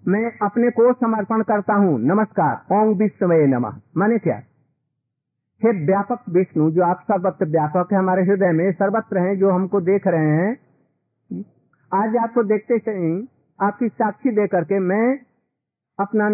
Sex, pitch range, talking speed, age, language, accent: male, 160-220 Hz, 150 wpm, 50-69, Hindi, native